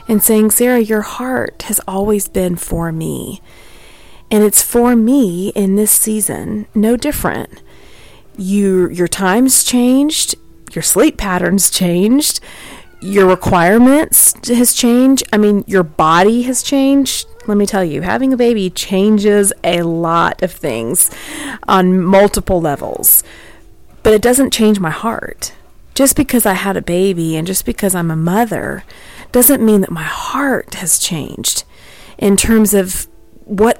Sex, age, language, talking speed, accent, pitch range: female, 30-49, English, 145 wpm, American, 185-235 Hz